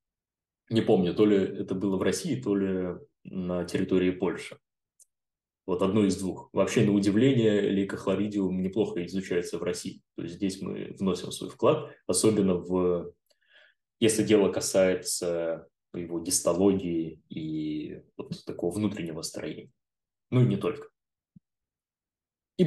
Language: Russian